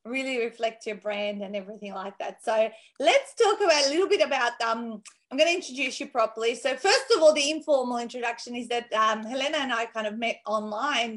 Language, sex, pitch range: English, female, 225-290 Hz